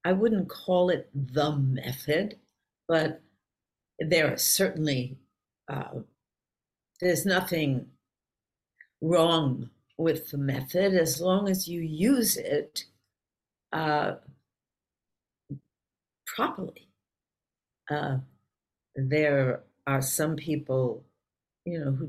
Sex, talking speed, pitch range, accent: female, 90 wpm, 135-175 Hz, American